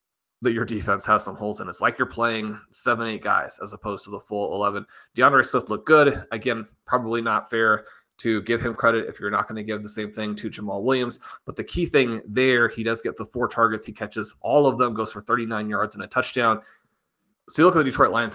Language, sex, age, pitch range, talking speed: English, male, 30-49, 105-125 Hz, 240 wpm